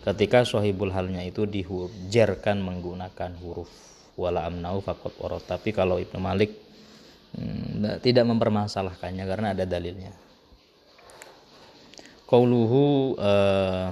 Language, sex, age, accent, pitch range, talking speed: Indonesian, male, 20-39, native, 90-105 Hz, 80 wpm